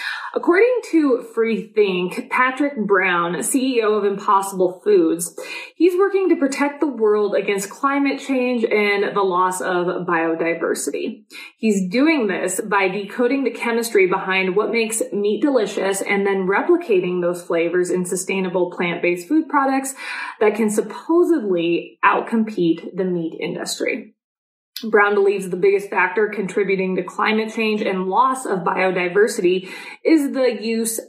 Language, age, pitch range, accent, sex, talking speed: English, 20-39, 190-255 Hz, American, female, 130 wpm